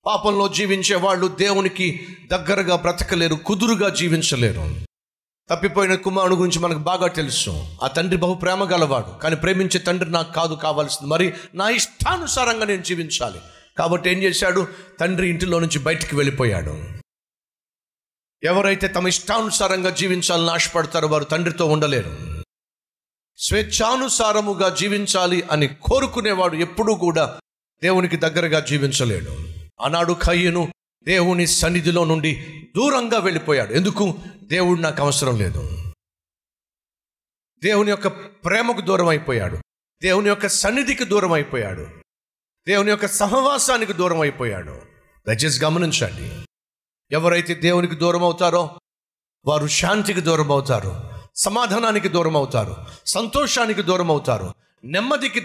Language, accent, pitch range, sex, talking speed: Telugu, native, 155-195 Hz, male, 105 wpm